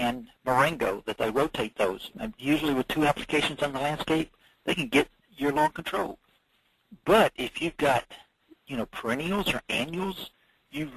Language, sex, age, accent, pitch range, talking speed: English, male, 60-79, American, 125-165 Hz, 160 wpm